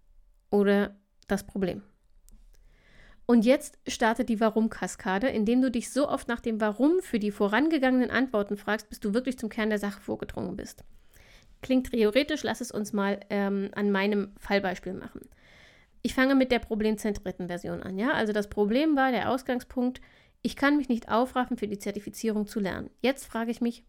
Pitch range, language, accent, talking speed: 205-255 Hz, German, German, 170 wpm